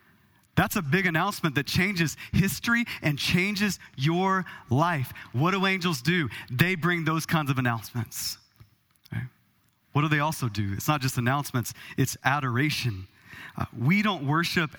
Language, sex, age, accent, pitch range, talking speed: English, male, 30-49, American, 125-165 Hz, 150 wpm